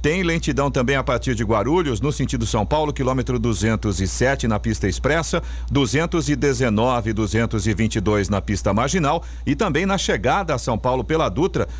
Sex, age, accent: male, 50-69, Brazilian